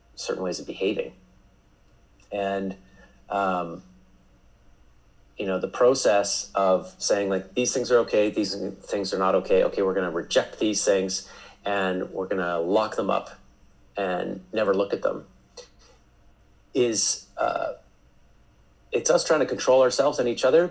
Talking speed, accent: 145 wpm, American